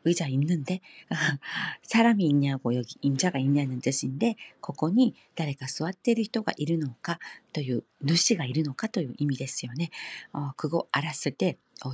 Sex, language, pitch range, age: female, Korean, 135-190 Hz, 40-59